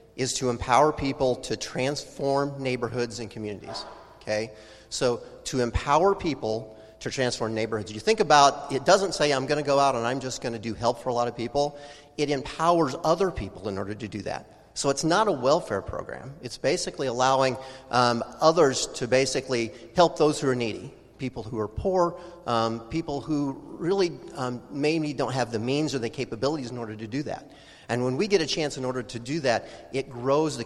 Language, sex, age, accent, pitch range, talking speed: English, male, 40-59, American, 115-150 Hz, 200 wpm